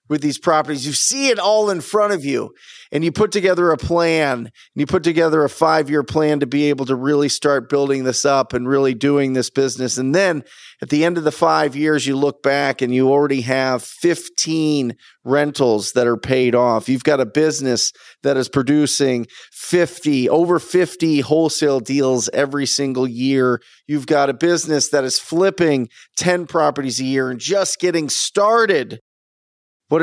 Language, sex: English, male